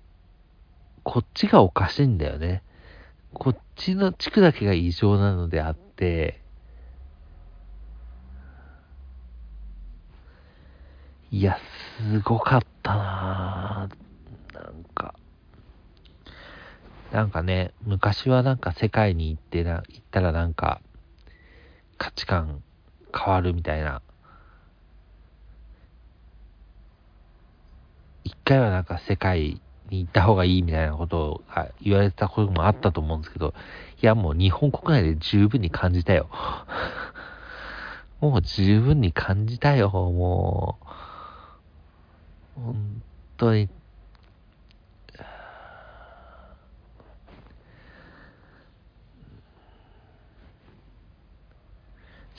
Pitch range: 80-105 Hz